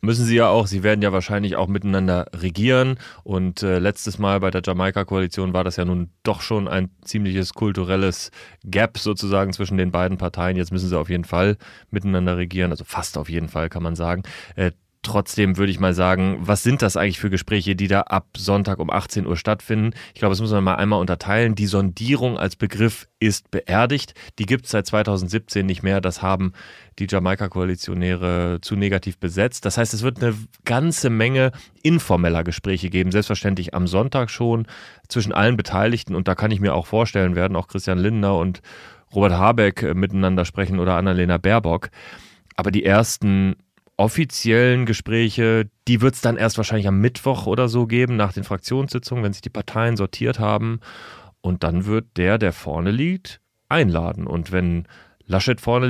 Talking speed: 180 wpm